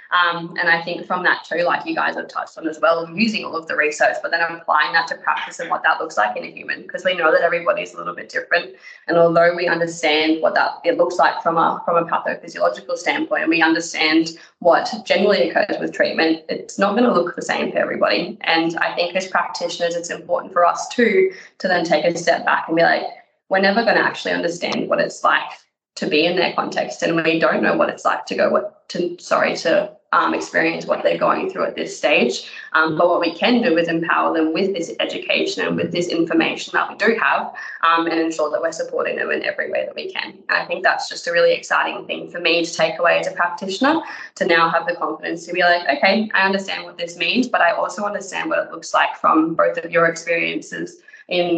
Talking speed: 240 wpm